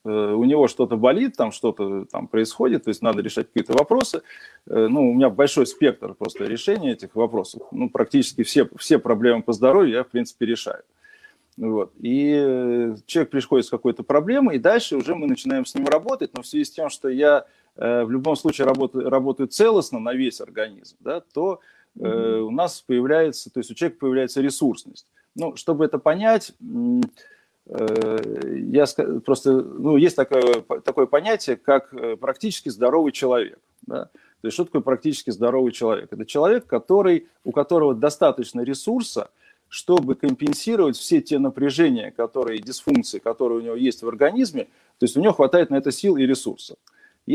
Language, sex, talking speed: Russian, male, 160 wpm